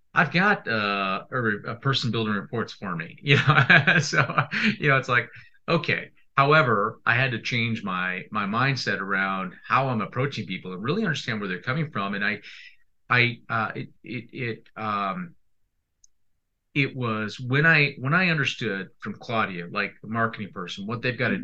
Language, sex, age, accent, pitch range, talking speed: English, male, 40-59, American, 105-145 Hz, 175 wpm